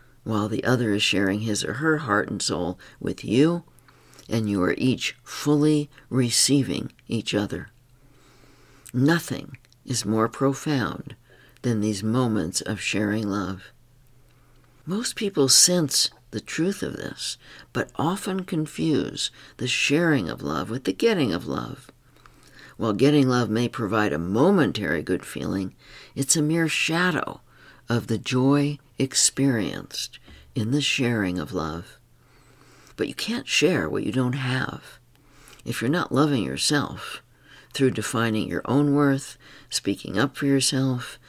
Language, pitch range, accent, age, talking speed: English, 110-140 Hz, American, 60-79, 135 wpm